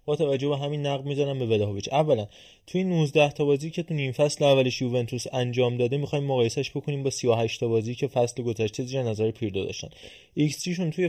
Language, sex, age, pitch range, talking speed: Persian, male, 20-39, 115-140 Hz, 220 wpm